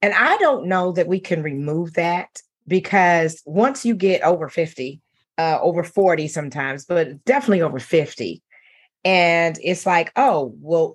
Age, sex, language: 40-59, female, English